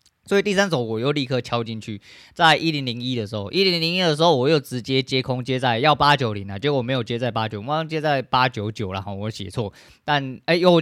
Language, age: Chinese, 20-39